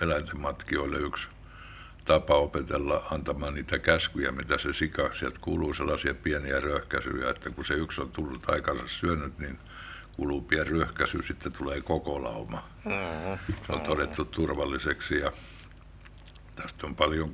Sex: male